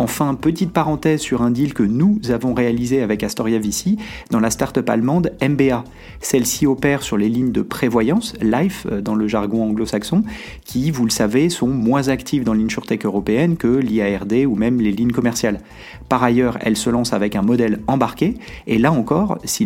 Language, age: French, 30-49